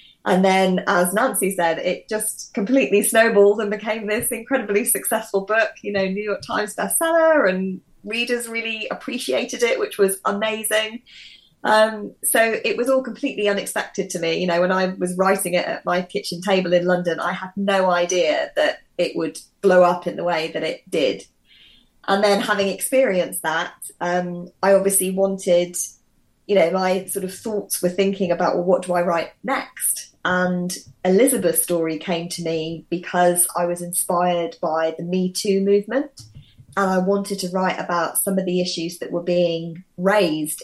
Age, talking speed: 20-39, 175 wpm